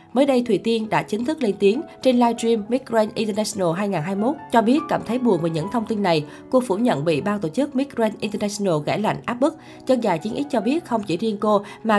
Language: Vietnamese